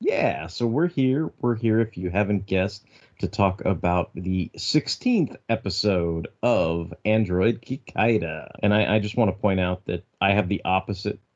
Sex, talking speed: male, 170 wpm